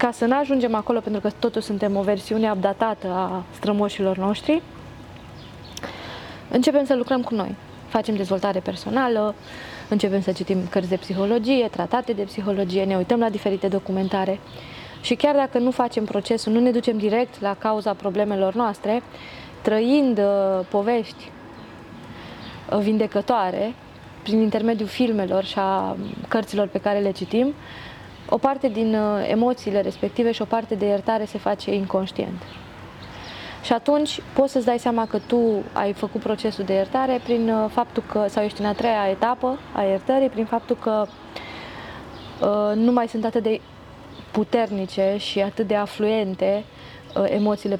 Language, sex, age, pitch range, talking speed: Romanian, female, 20-39, 195-230 Hz, 145 wpm